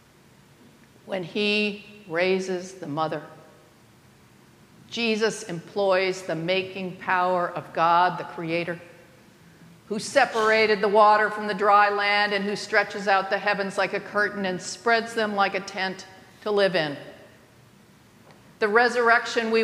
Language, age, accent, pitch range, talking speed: English, 50-69, American, 175-210 Hz, 130 wpm